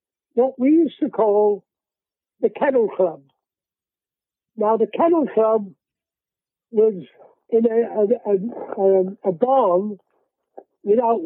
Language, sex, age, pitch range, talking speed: English, male, 60-79, 210-265 Hz, 105 wpm